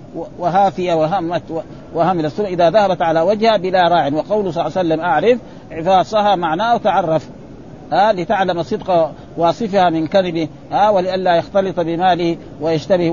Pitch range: 160-200 Hz